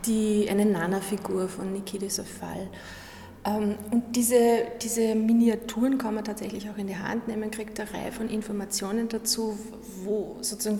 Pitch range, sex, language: 200-230 Hz, female, German